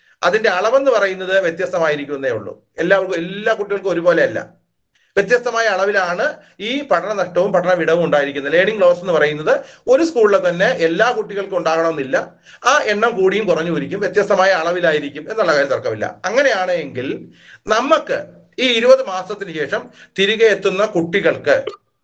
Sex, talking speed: male, 120 wpm